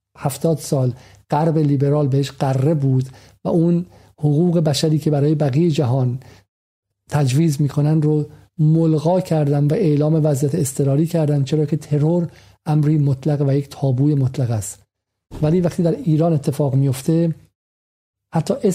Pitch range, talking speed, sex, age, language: 130-155 Hz, 135 wpm, male, 50-69, Persian